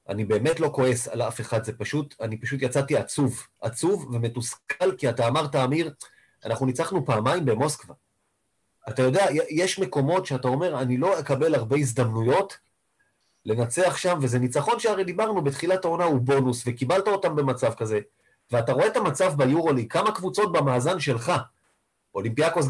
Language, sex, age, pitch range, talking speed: Hebrew, male, 30-49, 120-170 Hz, 155 wpm